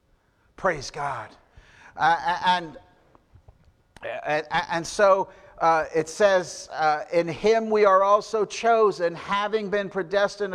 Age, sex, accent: 50-69, male, American